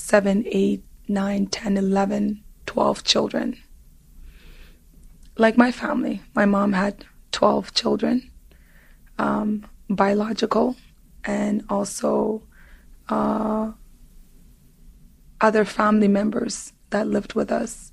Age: 20-39